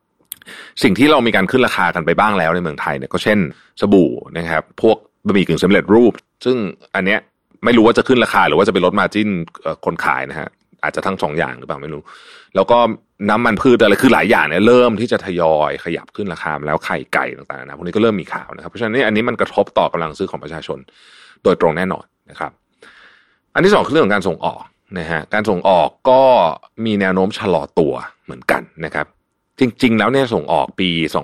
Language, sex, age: Thai, male, 30-49